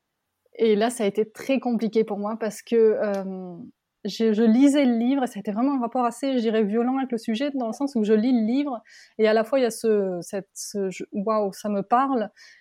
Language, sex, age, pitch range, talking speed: French, female, 20-39, 215-250 Hz, 245 wpm